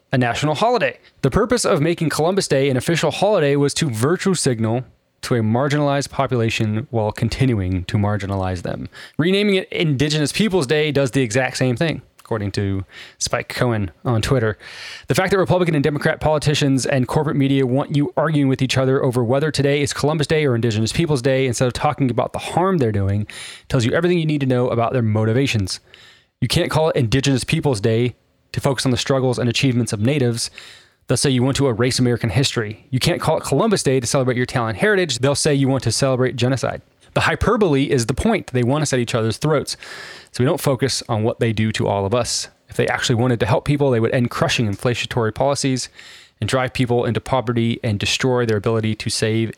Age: 20-39